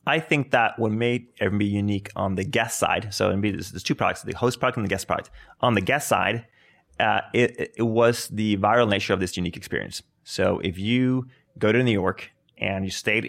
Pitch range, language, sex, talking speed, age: 100-120 Hz, English, male, 220 wpm, 30-49